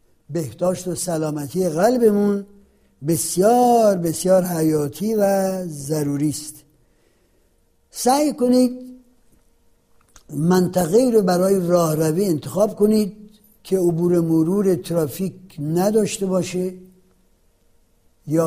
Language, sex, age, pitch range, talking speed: Persian, male, 60-79, 160-210 Hz, 80 wpm